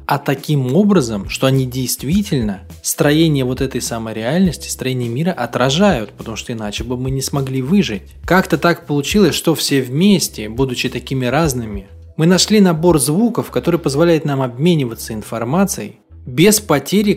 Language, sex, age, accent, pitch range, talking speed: Russian, male, 20-39, native, 120-170 Hz, 145 wpm